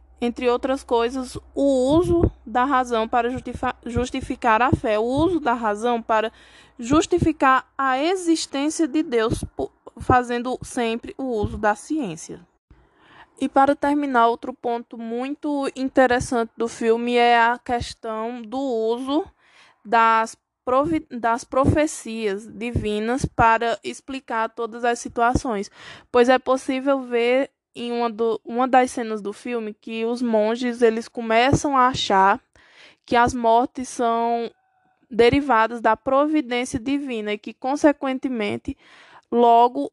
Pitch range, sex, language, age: 225-265 Hz, female, Portuguese, 20-39